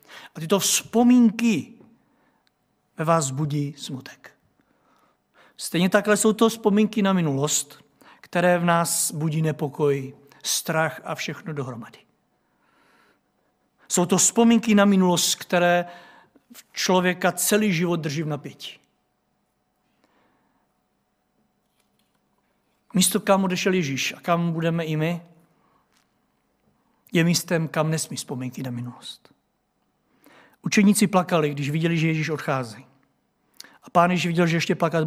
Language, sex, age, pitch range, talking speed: Czech, male, 60-79, 160-185 Hz, 110 wpm